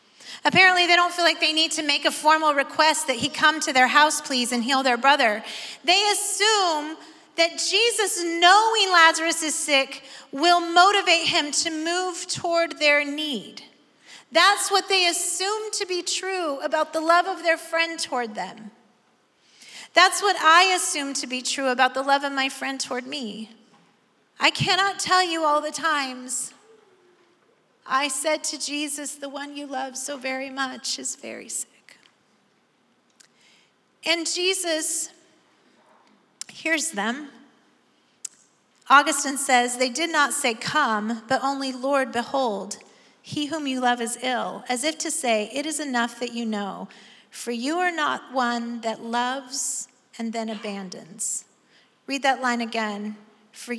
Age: 40-59